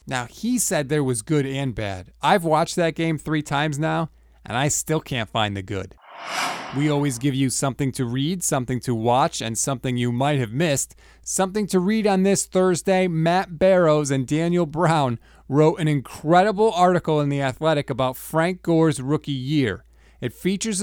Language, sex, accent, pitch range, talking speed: English, male, American, 130-180 Hz, 180 wpm